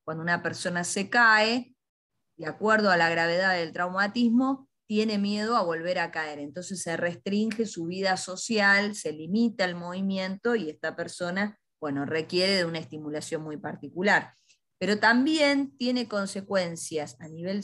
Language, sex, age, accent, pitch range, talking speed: Spanish, female, 20-39, Argentinian, 160-215 Hz, 150 wpm